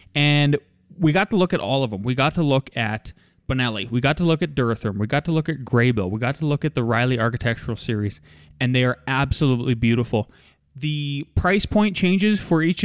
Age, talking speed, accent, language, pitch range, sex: 20-39, 220 wpm, American, English, 115-145 Hz, male